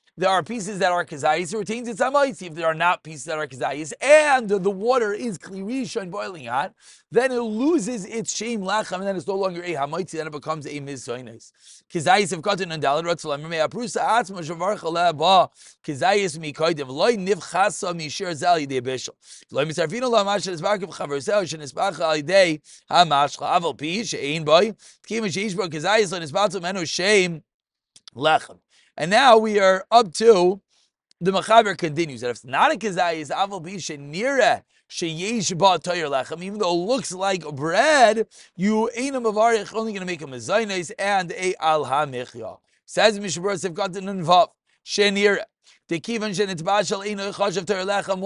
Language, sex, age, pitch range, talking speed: English, male, 30-49, 160-210 Hz, 190 wpm